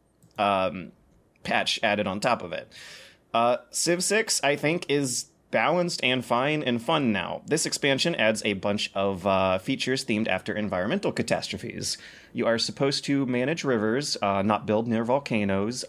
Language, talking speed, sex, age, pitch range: English, 155 wpm, male, 30-49, 105-135 Hz